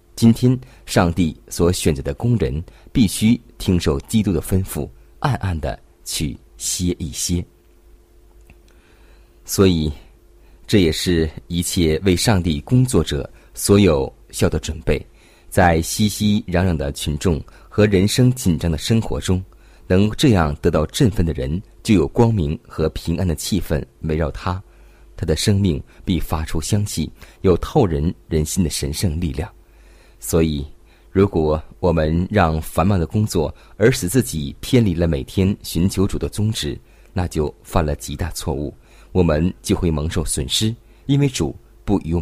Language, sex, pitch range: Chinese, male, 80-100 Hz